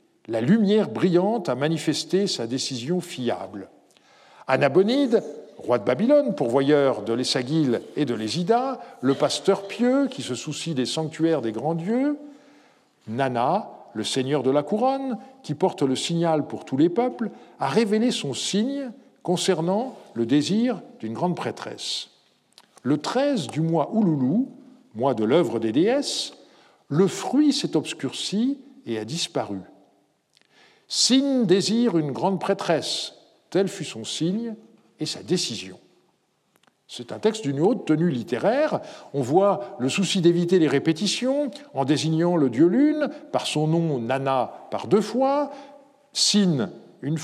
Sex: male